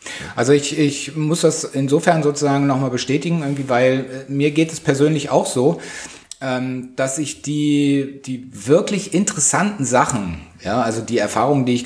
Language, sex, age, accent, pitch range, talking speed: German, male, 30-49, German, 125-150 Hz, 150 wpm